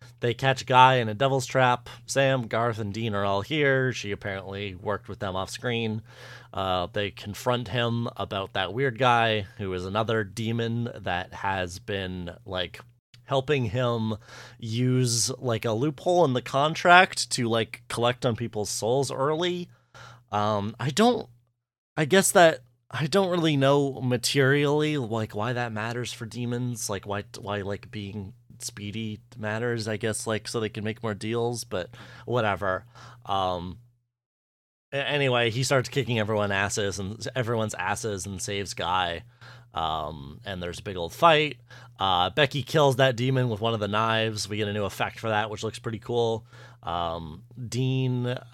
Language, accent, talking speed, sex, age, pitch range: English, American, 160 wpm, male, 30-49, 105-125 Hz